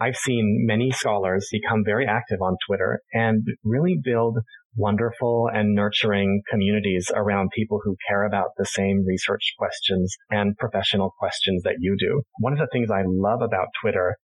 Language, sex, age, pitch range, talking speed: English, male, 30-49, 100-115 Hz, 165 wpm